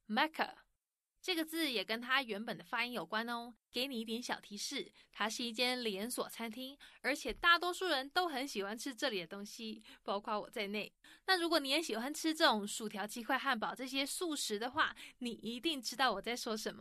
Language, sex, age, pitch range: English, female, 20-39, 215-295 Hz